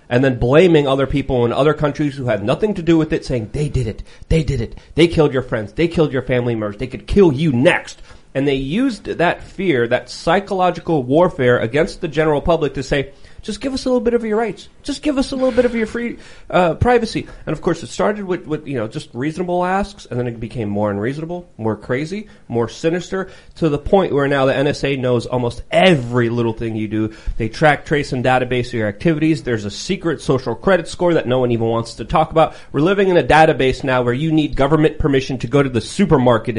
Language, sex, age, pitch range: English, male, 30-49, 120-160 Hz